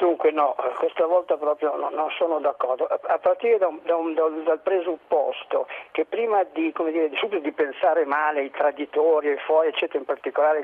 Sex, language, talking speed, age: male, Italian, 210 wpm, 50-69